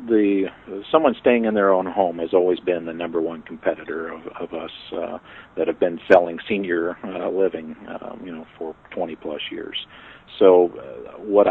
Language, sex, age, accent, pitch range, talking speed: English, male, 50-69, American, 80-95 Hz, 180 wpm